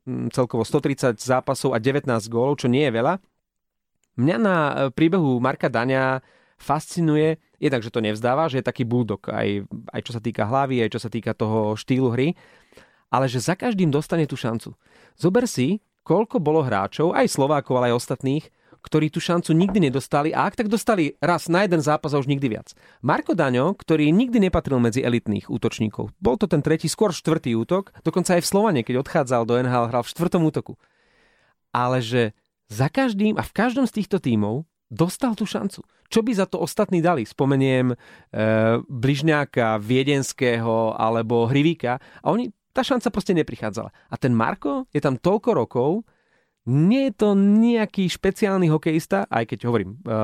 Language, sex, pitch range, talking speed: Slovak, male, 120-175 Hz, 175 wpm